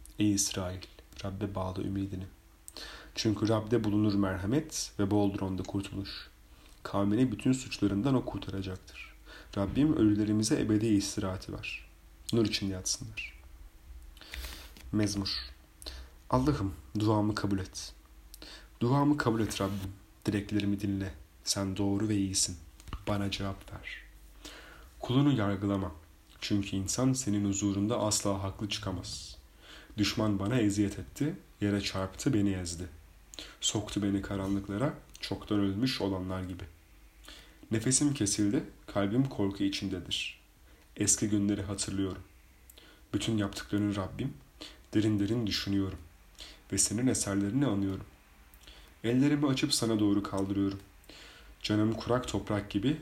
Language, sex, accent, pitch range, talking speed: Turkish, male, native, 95-105 Hz, 110 wpm